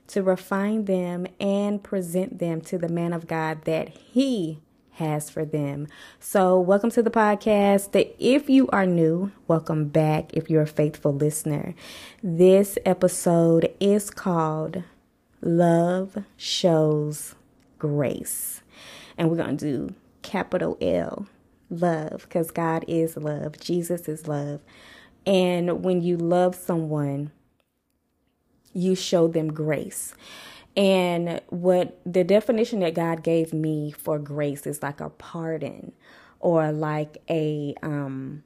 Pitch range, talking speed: 155-185 Hz, 125 wpm